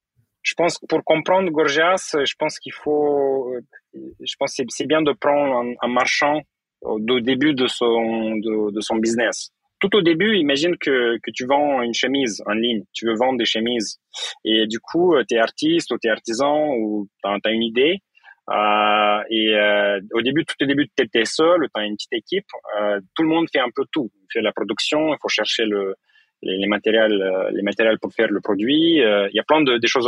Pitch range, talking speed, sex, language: 105-150 Hz, 205 wpm, male, French